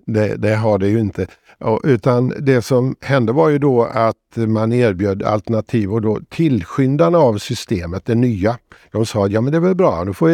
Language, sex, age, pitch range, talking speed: Swedish, male, 50-69, 100-125 Hz, 195 wpm